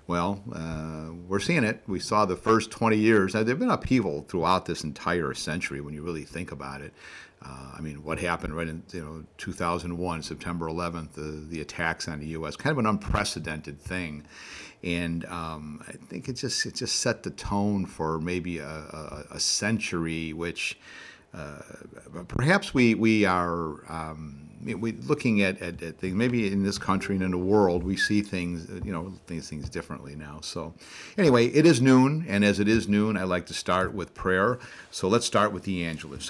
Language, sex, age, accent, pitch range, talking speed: English, male, 50-69, American, 80-105 Hz, 195 wpm